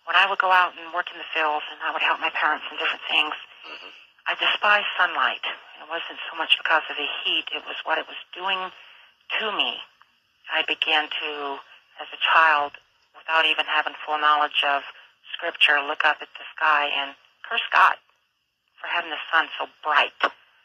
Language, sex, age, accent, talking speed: English, female, 50-69, American, 190 wpm